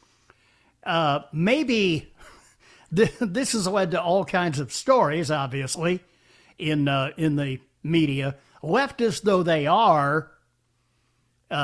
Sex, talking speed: male, 110 wpm